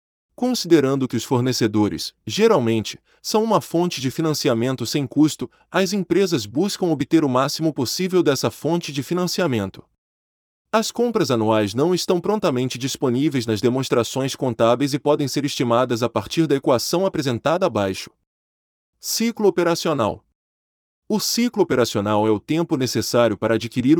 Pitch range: 110-170 Hz